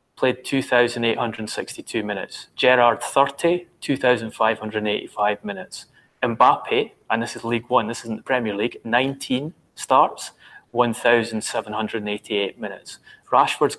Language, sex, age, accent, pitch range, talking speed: English, male, 30-49, British, 115-140 Hz, 100 wpm